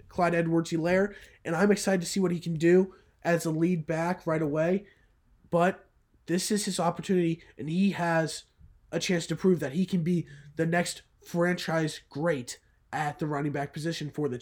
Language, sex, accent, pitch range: English, male, American, 160-190 Hz